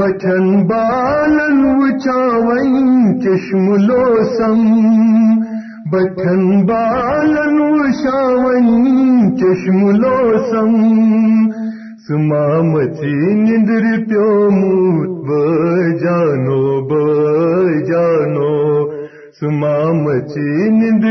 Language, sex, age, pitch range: Urdu, male, 50-69, 160-225 Hz